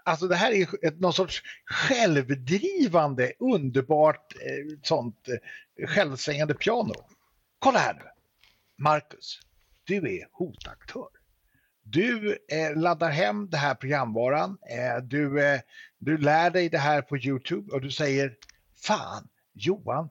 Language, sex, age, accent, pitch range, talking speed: English, male, 60-79, Swedish, 140-205 Hz, 120 wpm